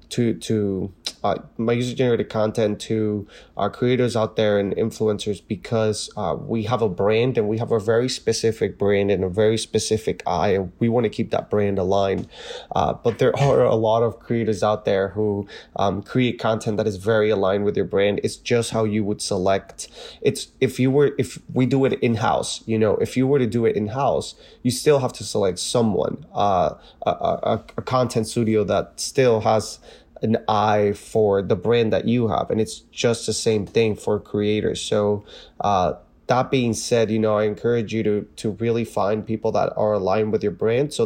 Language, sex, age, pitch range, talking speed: English, male, 20-39, 105-115 Hz, 205 wpm